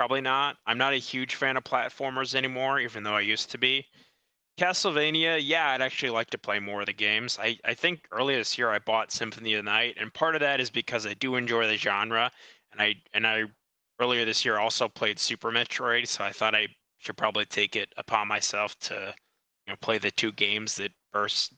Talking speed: 220 wpm